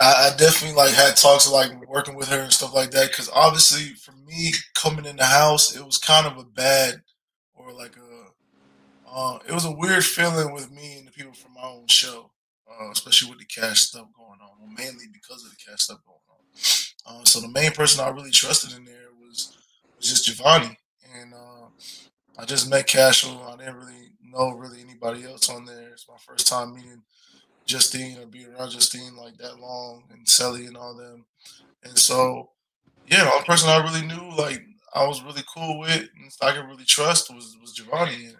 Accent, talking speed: American, 205 wpm